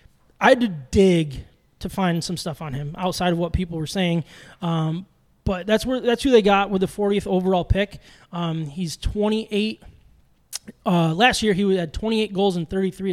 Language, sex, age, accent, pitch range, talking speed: English, male, 20-39, American, 170-200 Hz, 185 wpm